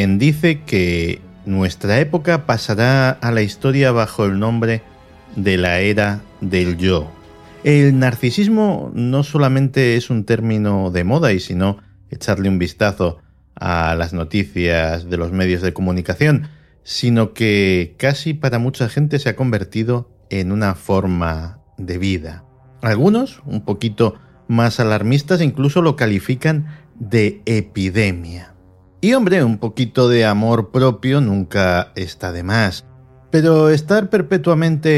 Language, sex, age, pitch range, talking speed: Spanish, male, 50-69, 90-130 Hz, 130 wpm